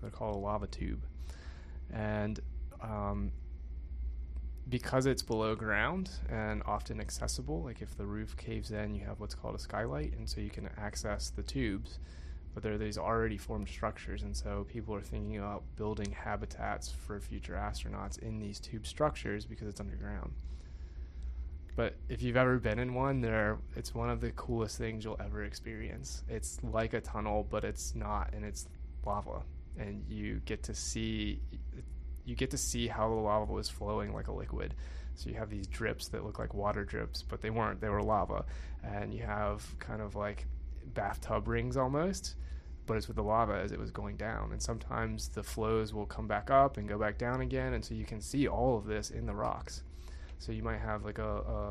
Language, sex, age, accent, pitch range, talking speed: English, male, 20-39, American, 70-110 Hz, 195 wpm